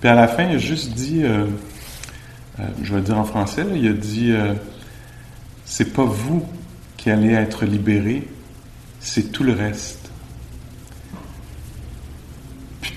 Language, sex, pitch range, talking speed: English, male, 105-120 Hz, 150 wpm